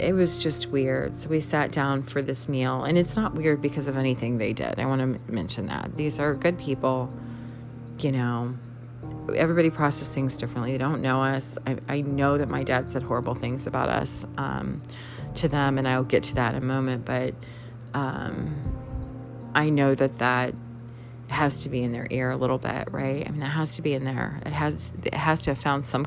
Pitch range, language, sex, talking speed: 120-150 Hz, English, female, 215 wpm